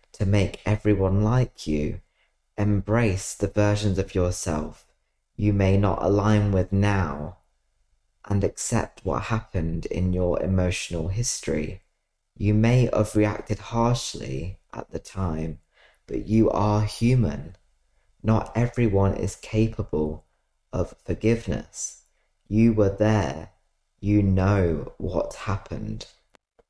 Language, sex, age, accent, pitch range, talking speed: English, male, 20-39, British, 90-110 Hz, 110 wpm